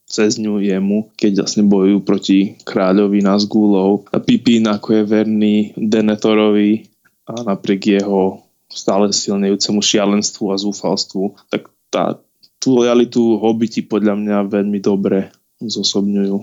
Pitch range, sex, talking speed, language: 105-120 Hz, male, 120 wpm, Slovak